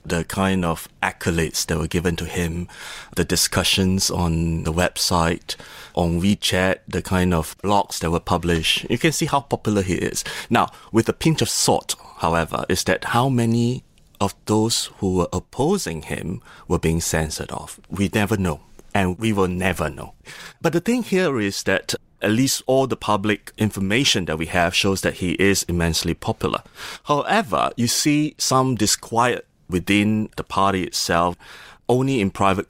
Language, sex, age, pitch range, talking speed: English, male, 30-49, 90-120 Hz, 170 wpm